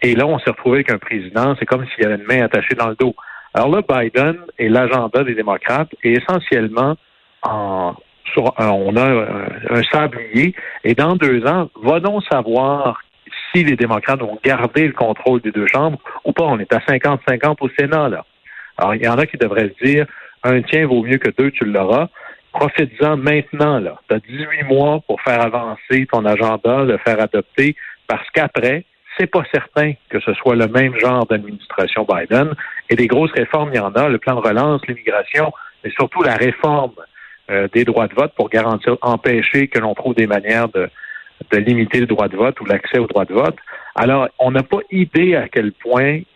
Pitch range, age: 115-145 Hz, 60-79